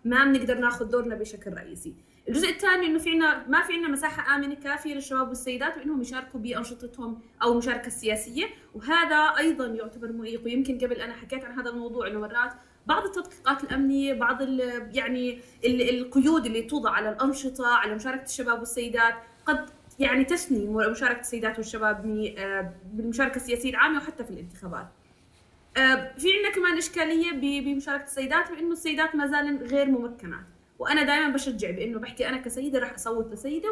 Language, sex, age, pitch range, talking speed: Arabic, female, 20-39, 230-290 Hz, 150 wpm